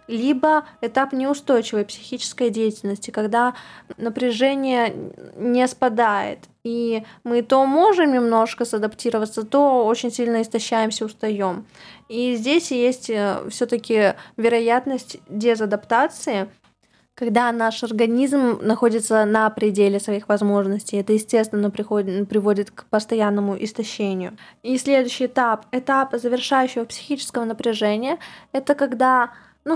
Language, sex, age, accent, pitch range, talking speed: Russian, female, 20-39, native, 215-245 Hz, 100 wpm